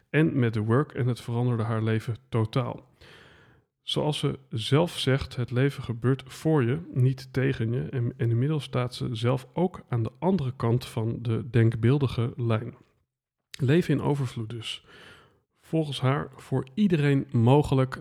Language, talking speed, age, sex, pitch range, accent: Dutch, 155 wpm, 40-59, male, 110-135 Hz, Dutch